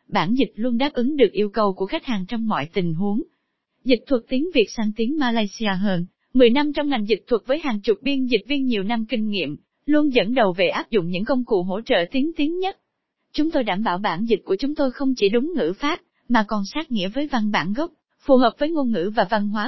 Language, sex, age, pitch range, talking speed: Vietnamese, female, 20-39, 220-280 Hz, 255 wpm